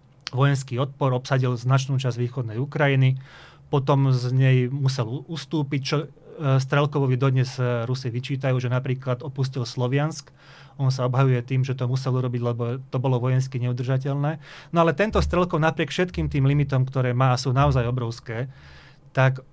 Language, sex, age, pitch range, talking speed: Czech, male, 30-49, 125-145 Hz, 150 wpm